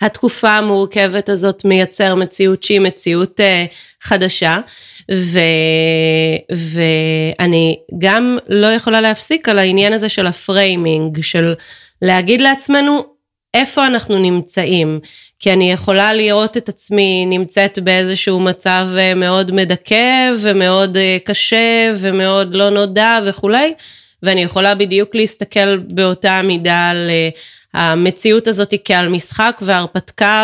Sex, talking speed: female, 110 wpm